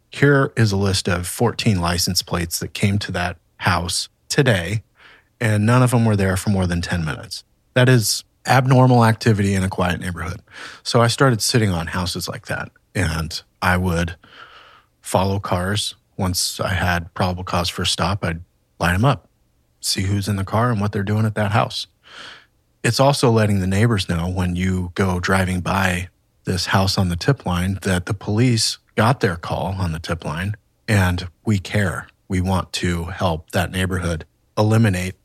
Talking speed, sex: 180 wpm, male